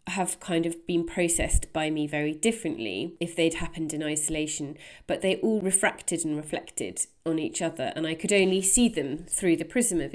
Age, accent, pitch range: 30-49, British, 160-180 Hz